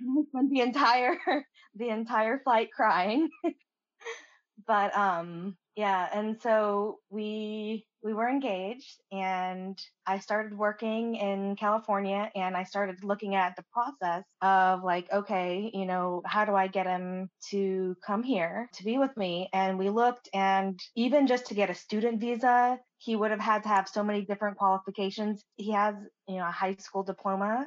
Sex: female